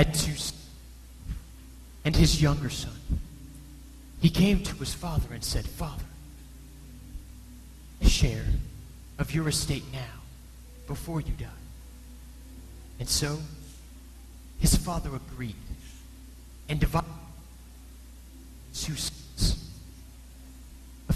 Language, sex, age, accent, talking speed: English, male, 30-49, American, 90 wpm